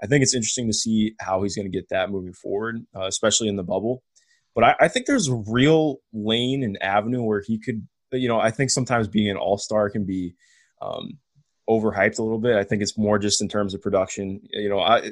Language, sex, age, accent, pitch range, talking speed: English, male, 20-39, American, 100-125 Hz, 230 wpm